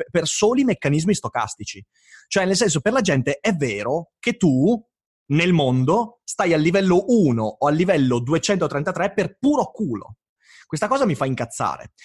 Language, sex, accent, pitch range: Italian, male, native, 125-180 Hz